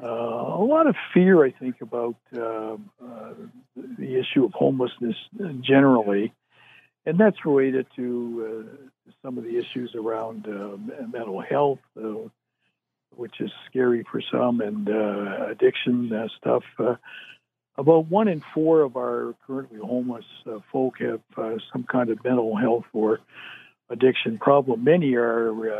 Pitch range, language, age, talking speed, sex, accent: 115-135 Hz, English, 60-79, 145 wpm, male, American